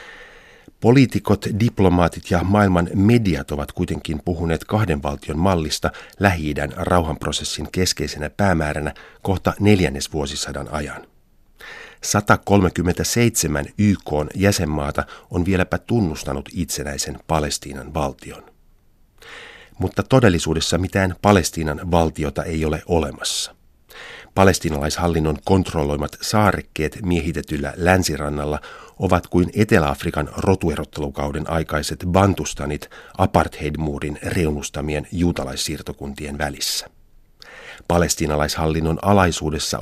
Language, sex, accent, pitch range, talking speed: Finnish, male, native, 75-95 Hz, 80 wpm